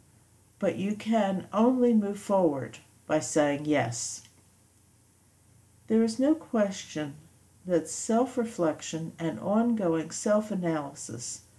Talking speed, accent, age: 95 wpm, American, 60-79